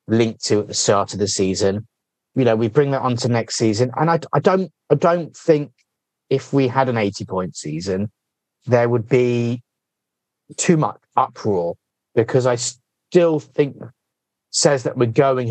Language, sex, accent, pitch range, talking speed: English, male, British, 105-130 Hz, 175 wpm